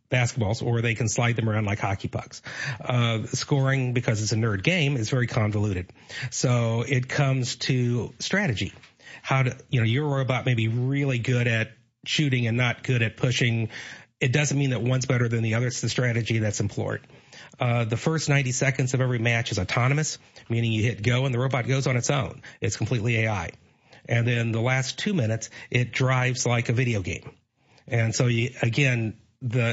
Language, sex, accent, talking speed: English, male, American, 195 wpm